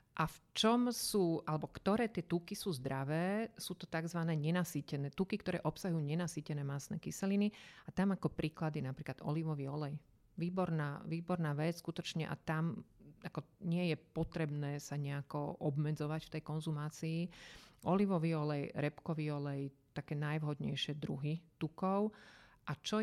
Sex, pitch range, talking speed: female, 150-175 Hz, 140 wpm